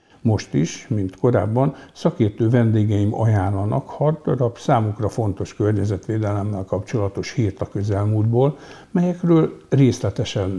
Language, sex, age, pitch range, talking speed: Hungarian, male, 60-79, 100-125 Hz, 100 wpm